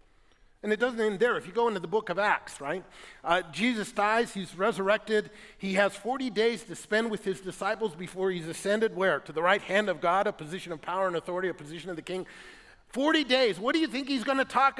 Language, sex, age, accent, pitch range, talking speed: English, male, 50-69, American, 190-240 Hz, 240 wpm